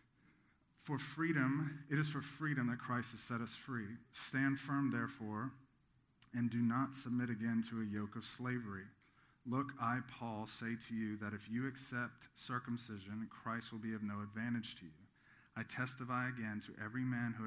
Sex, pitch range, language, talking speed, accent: male, 110-125 Hz, English, 175 wpm, American